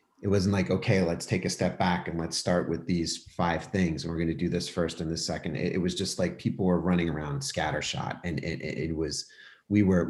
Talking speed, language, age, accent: 245 wpm, English, 30-49, American